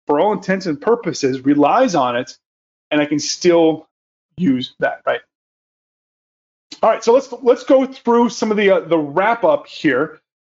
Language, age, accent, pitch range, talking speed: English, 30-49, American, 165-230 Hz, 170 wpm